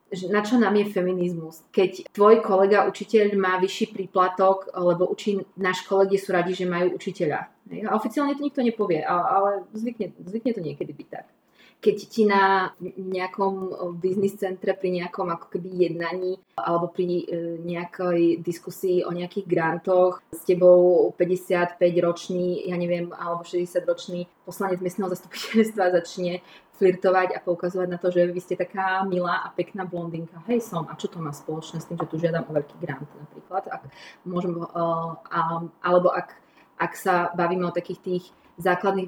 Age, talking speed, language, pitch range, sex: 20-39, 155 wpm, Slovak, 170-190 Hz, female